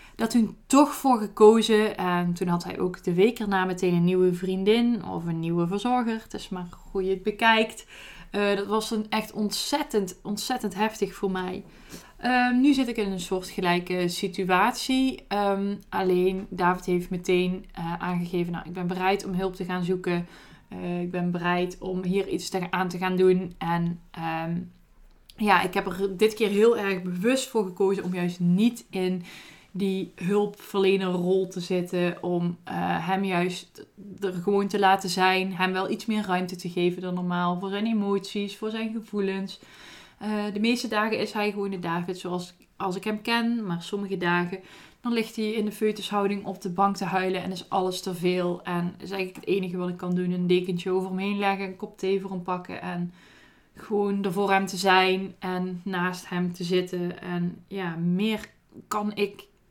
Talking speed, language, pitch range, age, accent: 195 wpm, Dutch, 180-205 Hz, 20-39, Dutch